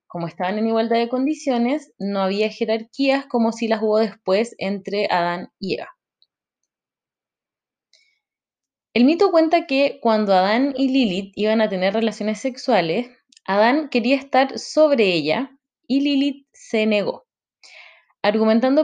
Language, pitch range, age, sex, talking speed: Spanish, 190-260 Hz, 20-39, female, 130 wpm